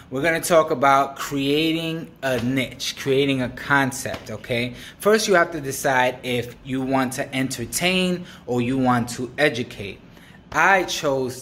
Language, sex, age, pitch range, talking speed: English, male, 20-39, 120-150 Hz, 150 wpm